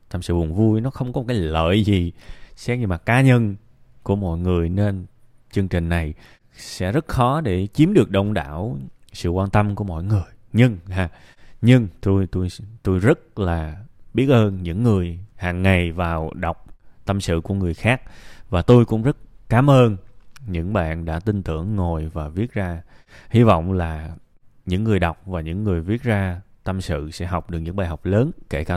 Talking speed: 195 wpm